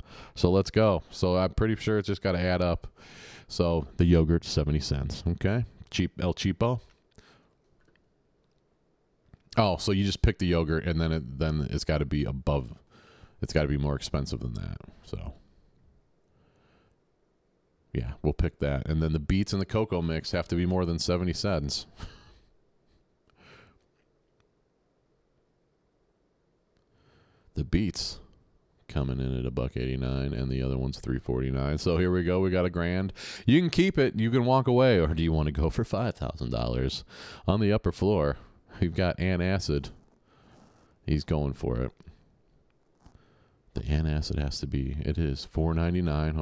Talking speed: 160 wpm